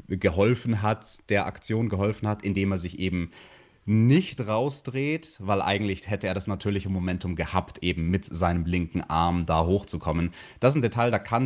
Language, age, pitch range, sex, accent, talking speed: German, 30-49, 90-115 Hz, male, German, 175 wpm